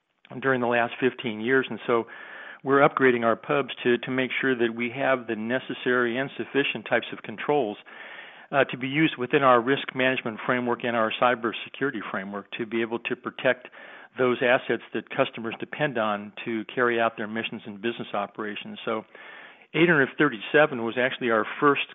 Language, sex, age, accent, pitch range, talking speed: English, male, 50-69, American, 115-130 Hz, 170 wpm